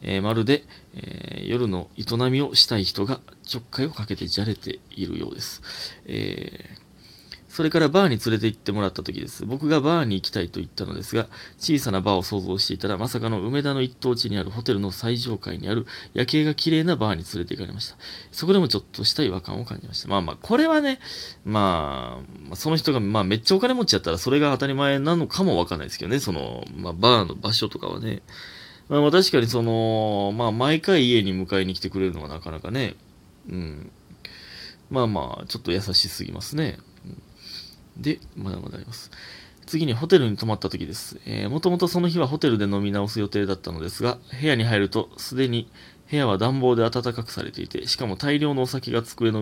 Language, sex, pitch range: Japanese, male, 100-140 Hz